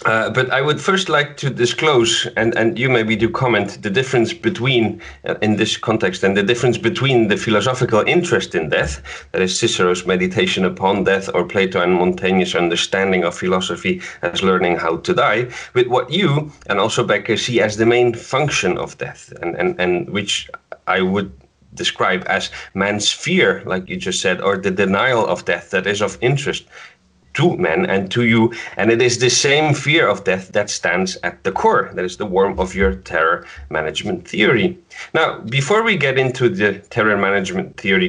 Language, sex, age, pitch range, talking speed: English, male, 30-49, 95-130 Hz, 190 wpm